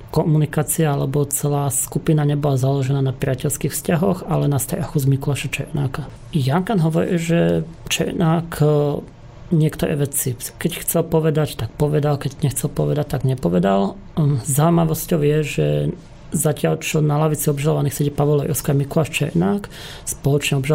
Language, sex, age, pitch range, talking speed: Slovak, male, 30-49, 140-155 Hz, 135 wpm